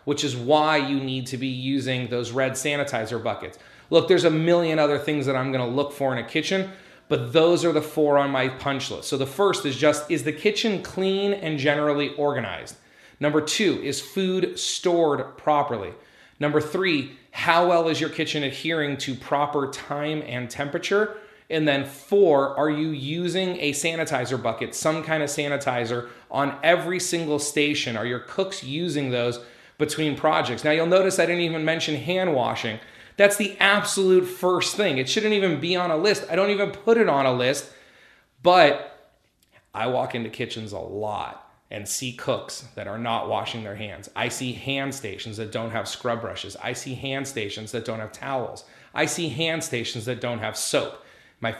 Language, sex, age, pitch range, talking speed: English, male, 30-49, 130-170 Hz, 190 wpm